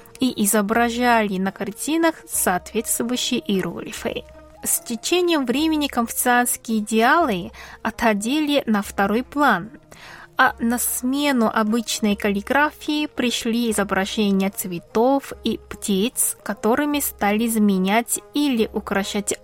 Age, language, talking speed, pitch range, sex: 20-39, Russian, 95 wpm, 205-260 Hz, female